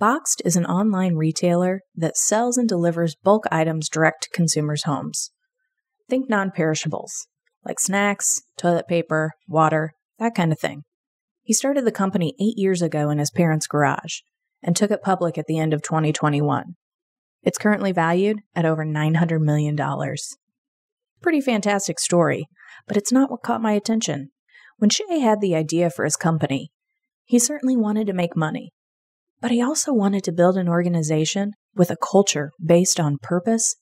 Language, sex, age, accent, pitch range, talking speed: English, female, 30-49, American, 165-220 Hz, 160 wpm